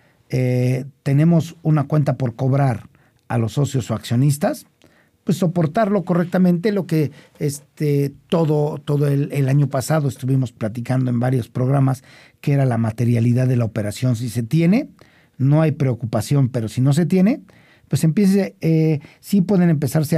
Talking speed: 160 wpm